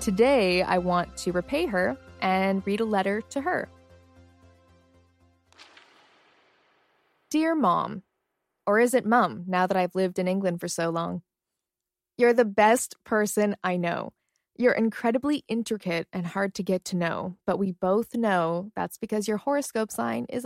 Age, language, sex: 20-39, English, female